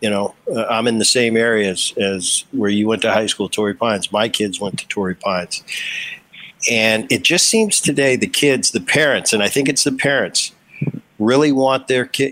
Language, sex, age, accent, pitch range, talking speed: English, male, 50-69, American, 115-155 Hz, 205 wpm